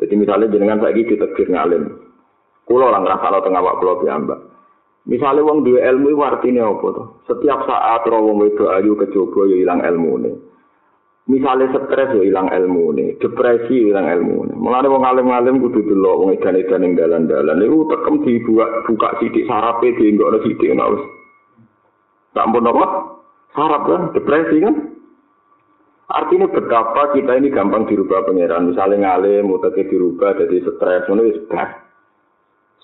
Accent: native